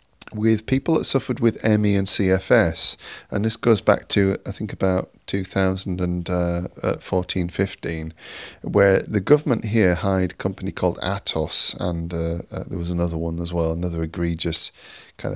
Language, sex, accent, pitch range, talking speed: English, male, British, 85-105 Hz, 150 wpm